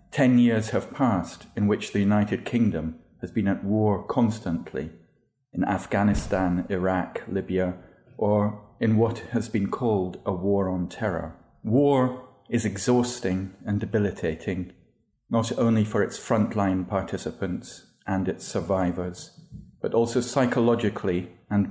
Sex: male